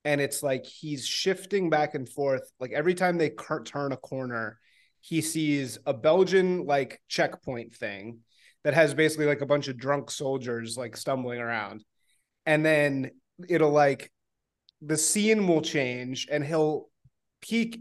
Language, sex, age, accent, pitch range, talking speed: English, male, 30-49, American, 135-170 Hz, 150 wpm